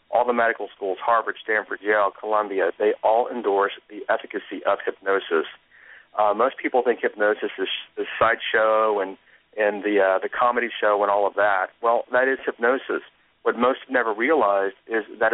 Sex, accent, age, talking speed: male, American, 40-59, 175 wpm